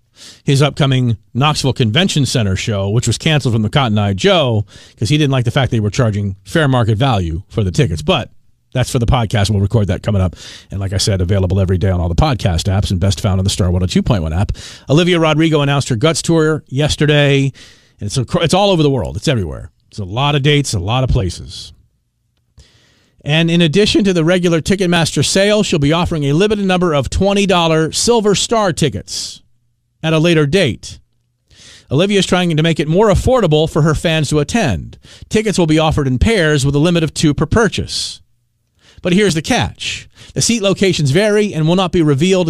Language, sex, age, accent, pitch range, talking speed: English, male, 40-59, American, 115-165 Hz, 205 wpm